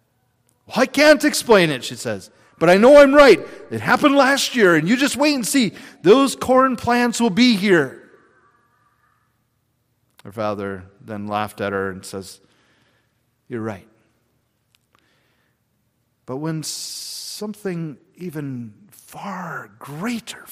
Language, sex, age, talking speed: English, male, 40-59, 125 wpm